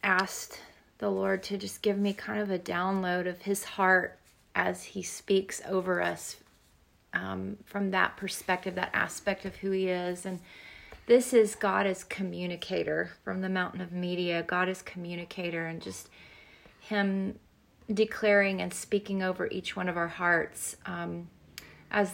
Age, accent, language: 30-49, American, English